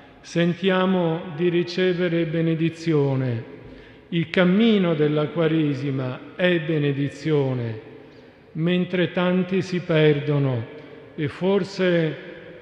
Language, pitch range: Italian, 150-180 Hz